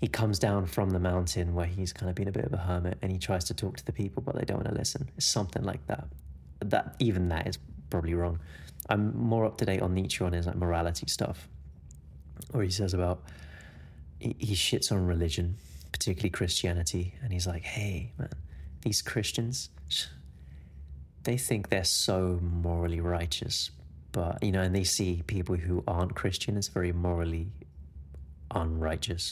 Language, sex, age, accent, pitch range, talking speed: English, male, 30-49, British, 80-110 Hz, 180 wpm